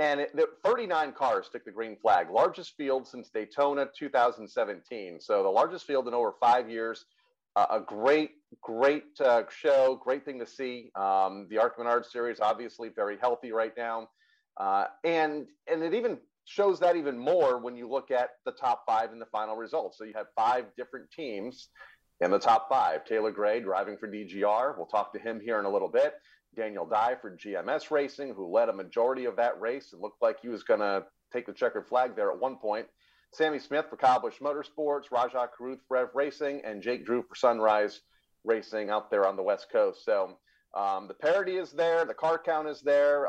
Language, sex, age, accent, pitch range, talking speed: English, male, 40-59, American, 110-155 Hz, 200 wpm